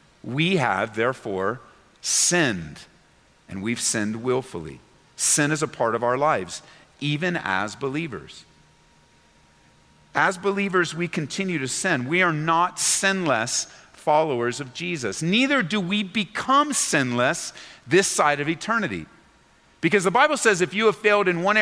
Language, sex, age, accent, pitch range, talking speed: English, male, 50-69, American, 145-200 Hz, 140 wpm